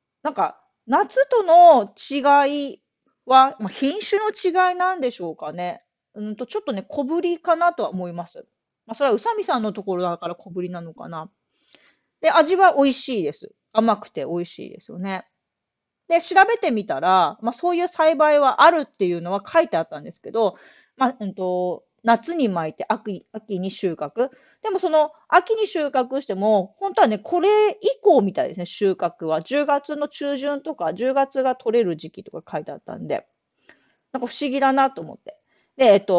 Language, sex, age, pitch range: Japanese, female, 40-59, 190-305 Hz